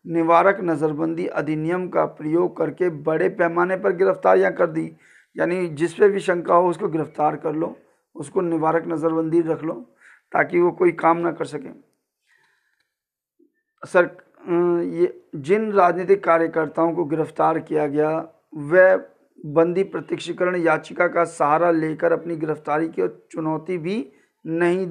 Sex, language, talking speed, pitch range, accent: male, Hindi, 135 wpm, 160-185 Hz, native